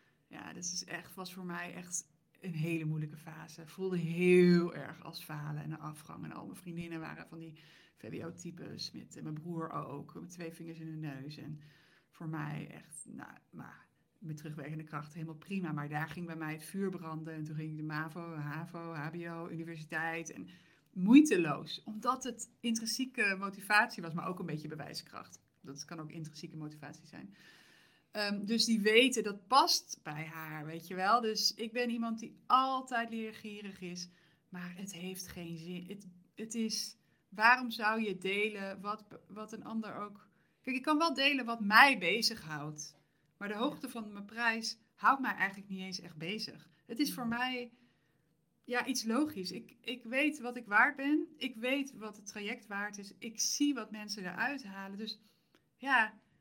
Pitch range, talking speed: 160-225 Hz, 180 wpm